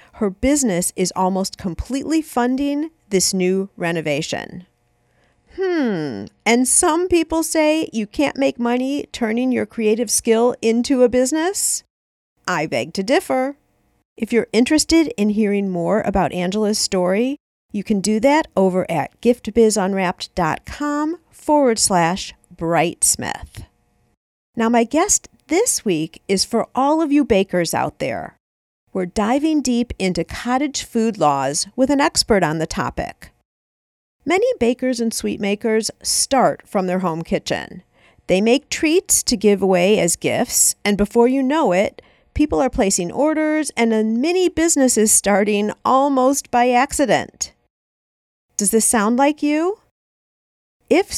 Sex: female